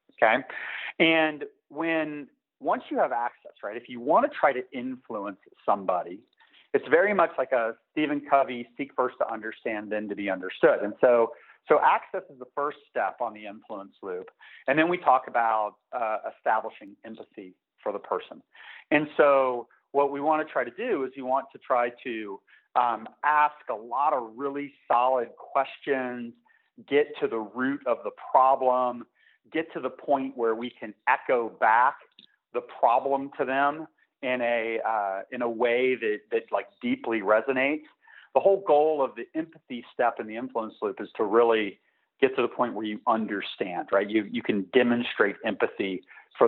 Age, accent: 40-59, American